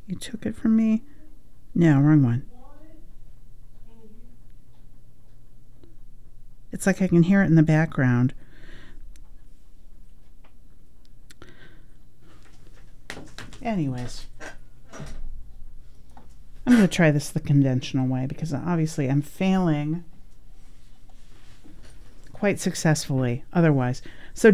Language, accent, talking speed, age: English, American, 85 wpm, 50-69